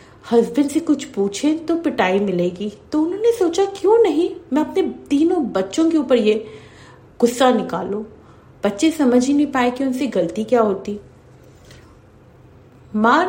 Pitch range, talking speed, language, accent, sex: 200-275 Hz, 145 wpm, Hindi, native, female